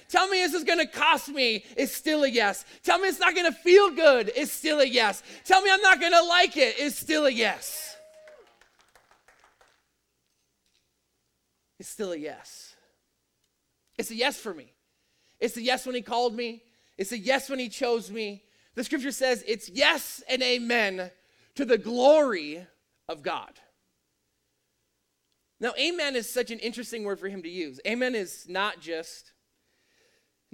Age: 30-49